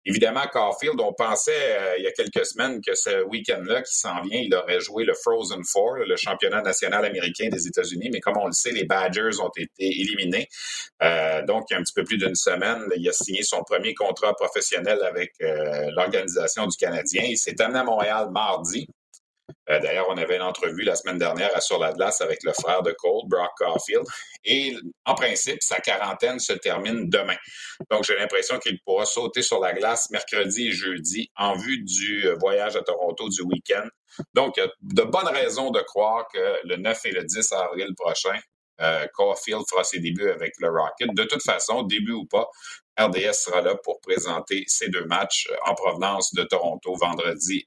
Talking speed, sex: 200 wpm, male